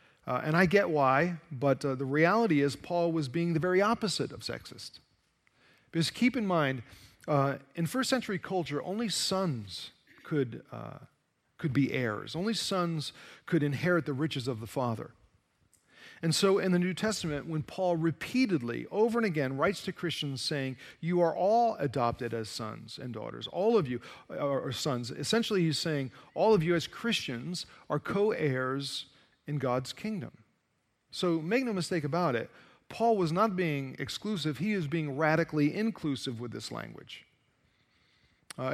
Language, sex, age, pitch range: English, male, 40-59, 135-180 Hz